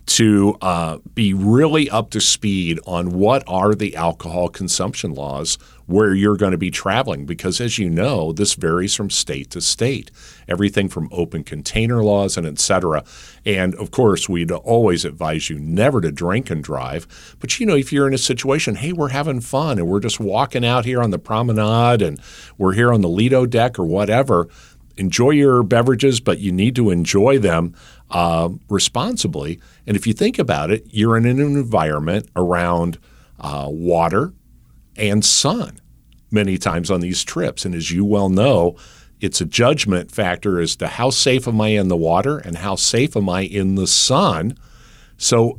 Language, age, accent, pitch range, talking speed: English, 50-69, American, 90-120 Hz, 180 wpm